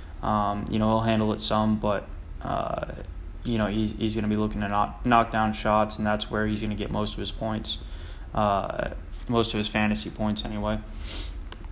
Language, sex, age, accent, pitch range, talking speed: English, male, 10-29, American, 100-115 Hz, 205 wpm